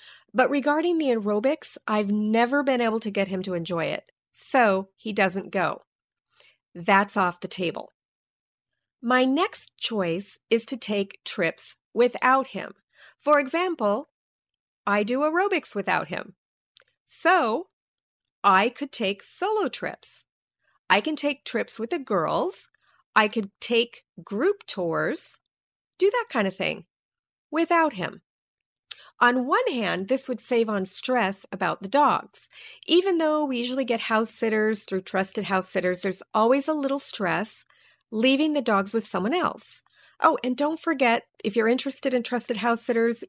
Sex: female